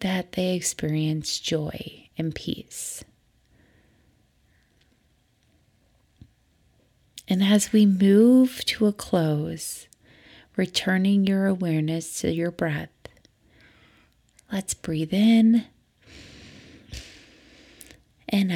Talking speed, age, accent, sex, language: 75 wpm, 30-49, American, female, English